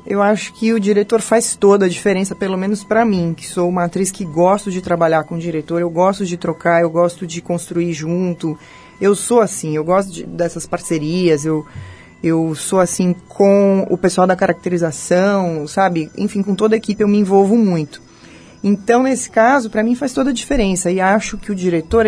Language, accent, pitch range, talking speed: Portuguese, Brazilian, 170-215 Hz, 200 wpm